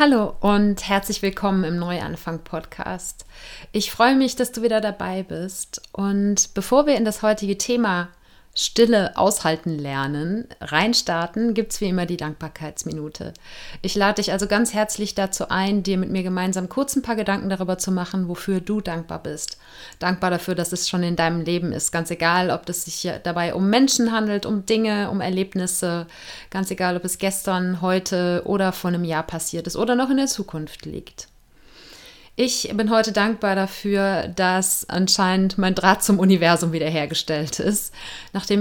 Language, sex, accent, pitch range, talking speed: German, female, German, 180-215 Hz, 170 wpm